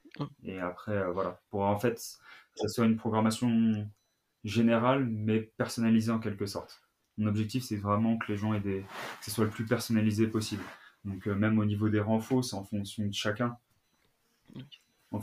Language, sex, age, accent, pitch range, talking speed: French, male, 20-39, French, 105-115 Hz, 180 wpm